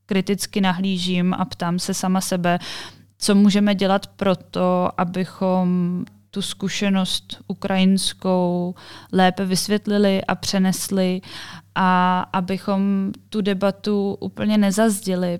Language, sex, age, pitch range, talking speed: Czech, female, 20-39, 170-195 Hz, 95 wpm